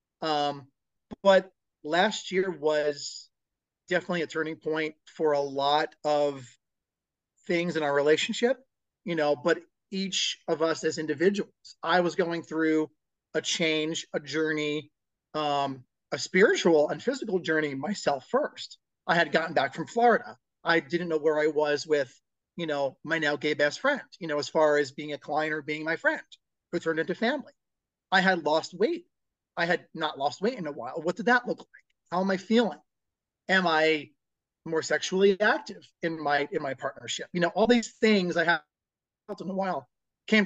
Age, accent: 40-59, American